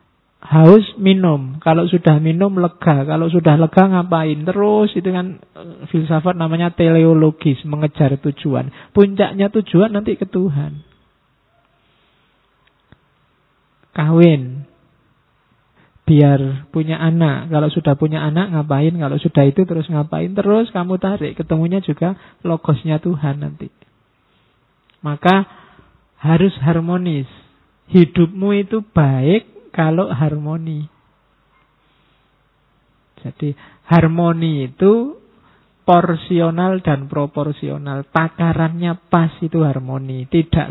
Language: Indonesian